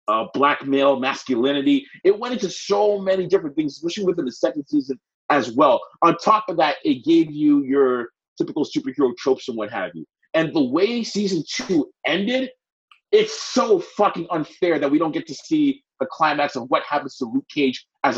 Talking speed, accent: 190 wpm, American